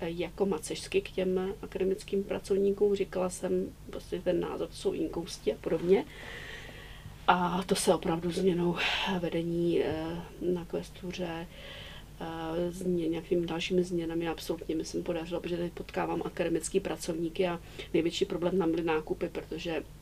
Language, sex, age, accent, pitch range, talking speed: Czech, female, 40-59, native, 165-185 Hz, 130 wpm